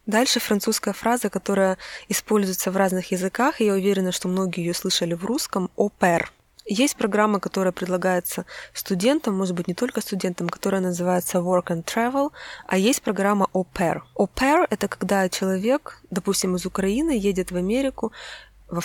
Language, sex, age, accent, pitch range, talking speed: Russian, female, 20-39, native, 180-220 Hz, 160 wpm